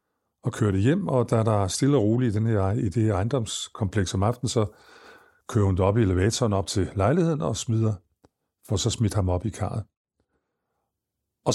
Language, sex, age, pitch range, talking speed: Danish, male, 50-69, 100-125 Hz, 175 wpm